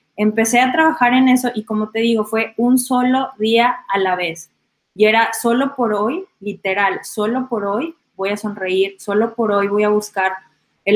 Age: 20-39